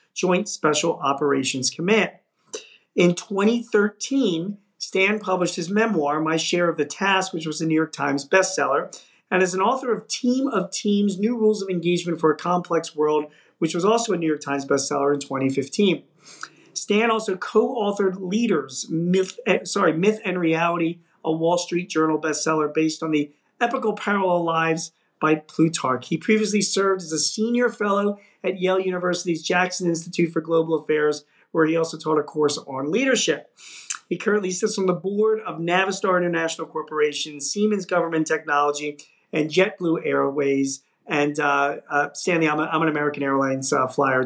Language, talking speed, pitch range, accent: English, 165 wpm, 150-195 Hz, American